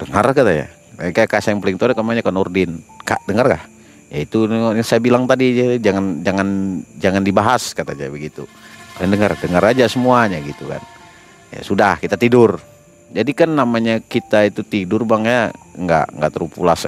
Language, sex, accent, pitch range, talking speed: Indonesian, male, native, 95-130 Hz, 175 wpm